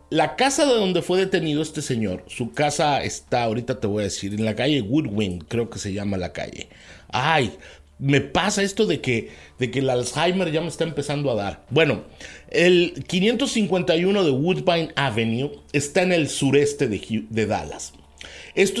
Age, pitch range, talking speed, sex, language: 50-69, 115-170 Hz, 175 wpm, male, Spanish